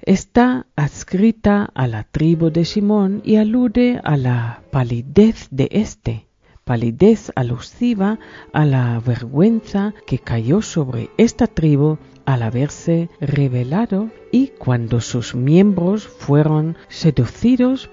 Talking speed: 110 wpm